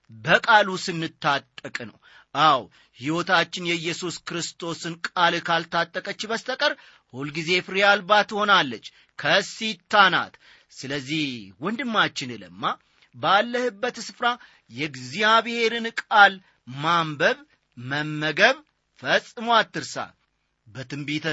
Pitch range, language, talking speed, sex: 145-225 Hz, Amharic, 75 wpm, male